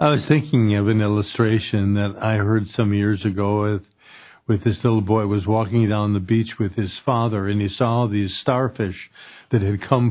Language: English